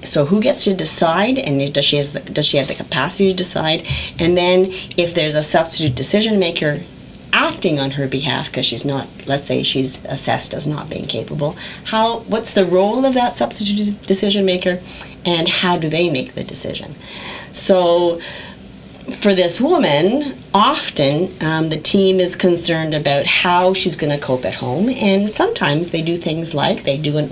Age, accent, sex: 40-59, American, female